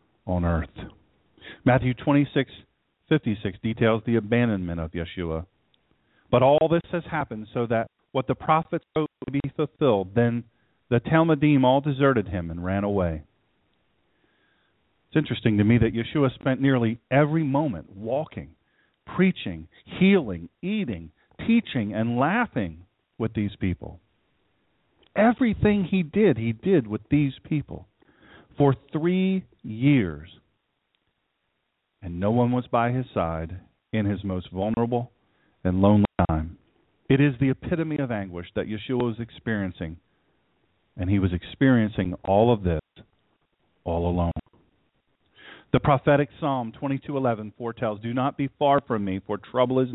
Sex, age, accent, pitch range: male, 50-69, American, 95-140 Hz